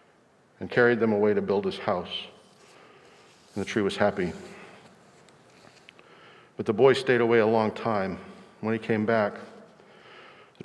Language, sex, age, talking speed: English, male, 50-69, 145 wpm